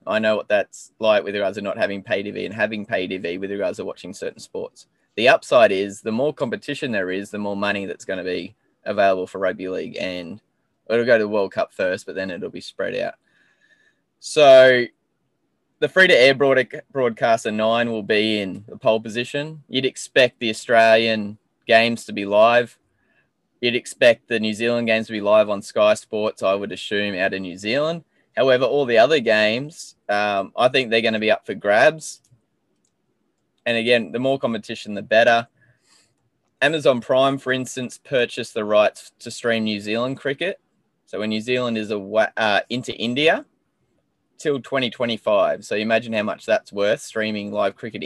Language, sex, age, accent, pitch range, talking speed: English, male, 20-39, Australian, 105-125 Hz, 180 wpm